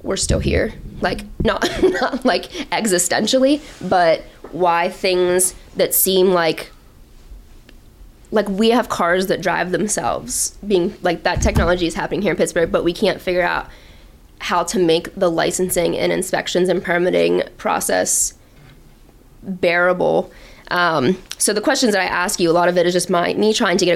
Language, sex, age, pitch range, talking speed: English, female, 20-39, 170-190 Hz, 165 wpm